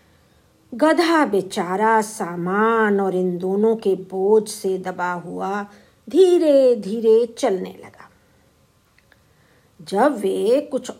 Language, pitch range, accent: Hindi, 195-285 Hz, native